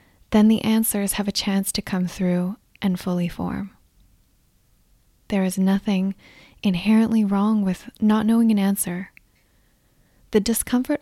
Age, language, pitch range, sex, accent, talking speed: 20-39, English, 185-220 Hz, female, American, 130 wpm